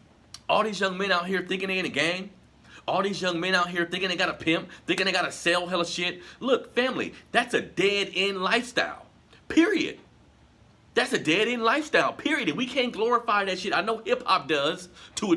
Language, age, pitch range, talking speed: English, 40-59, 155-220 Hz, 205 wpm